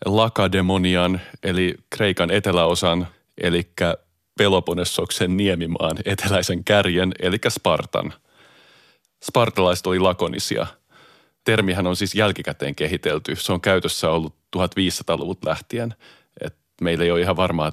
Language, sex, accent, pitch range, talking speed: Finnish, male, native, 90-105 Hz, 100 wpm